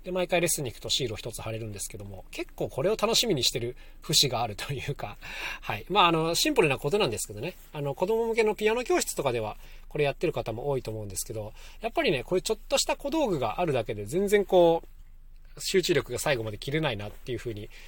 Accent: native